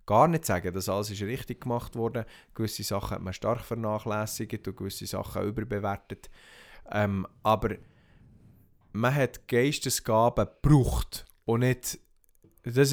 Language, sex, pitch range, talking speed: German, male, 95-120 Hz, 130 wpm